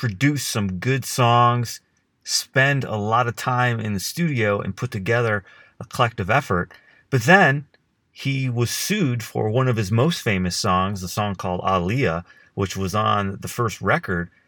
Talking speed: 165 wpm